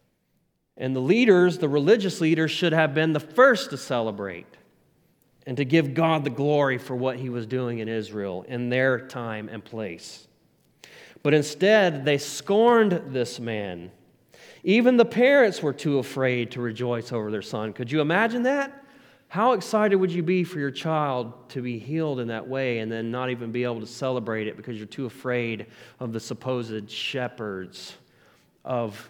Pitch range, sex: 115-150 Hz, male